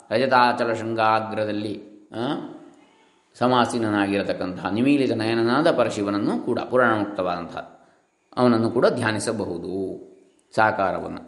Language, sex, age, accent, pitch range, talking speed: Kannada, male, 20-39, native, 115-185 Hz, 70 wpm